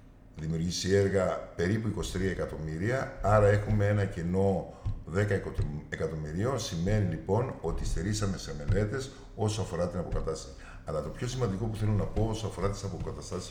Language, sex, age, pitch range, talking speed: Greek, male, 50-69, 80-105 Hz, 145 wpm